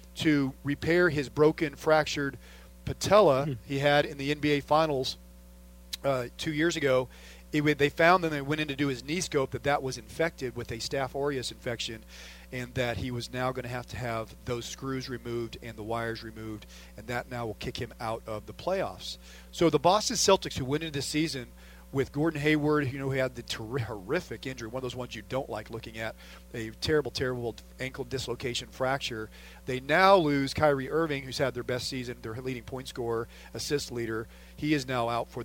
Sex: male